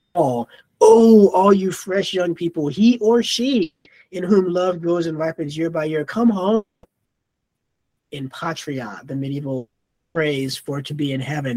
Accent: American